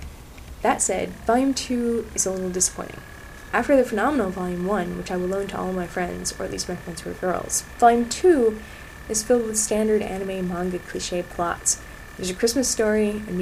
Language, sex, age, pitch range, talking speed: English, female, 10-29, 185-250 Hz, 195 wpm